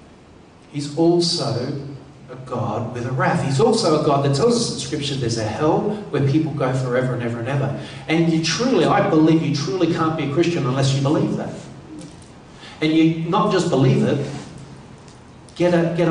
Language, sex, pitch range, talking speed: English, male, 145-180 Hz, 185 wpm